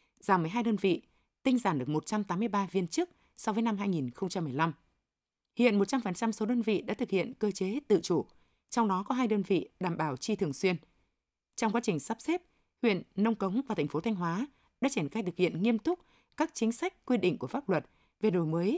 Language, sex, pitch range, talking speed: Vietnamese, female, 175-235 Hz, 215 wpm